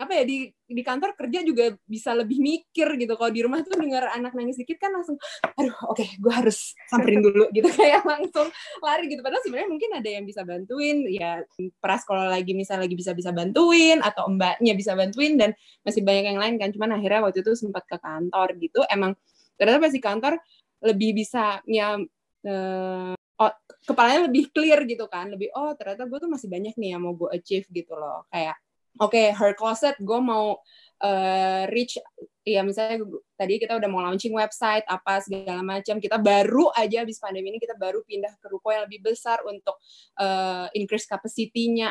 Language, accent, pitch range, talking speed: Indonesian, native, 195-245 Hz, 190 wpm